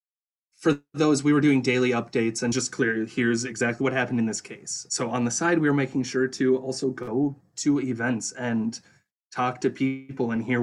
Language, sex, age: English, male, 20-39